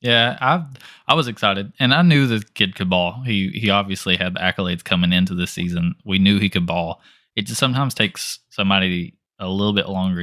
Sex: male